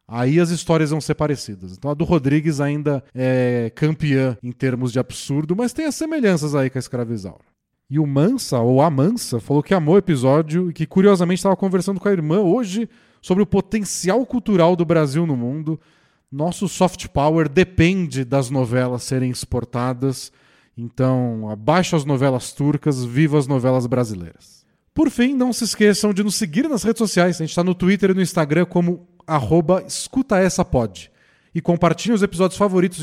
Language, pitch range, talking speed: Portuguese, 135-190 Hz, 175 wpm